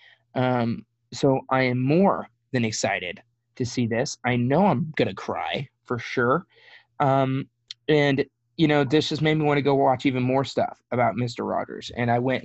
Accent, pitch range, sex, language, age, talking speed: American, 115-130 Hz, male, English, 20-39, 185 wpm